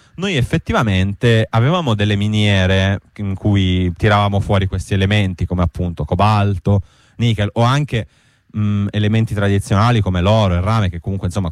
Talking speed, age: 145 wpm, 30-49